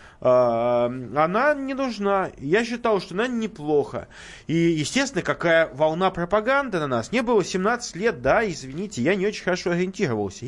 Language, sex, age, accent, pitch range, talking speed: Russian, male, 20-39, native, 145-215 Hz, 150 wpm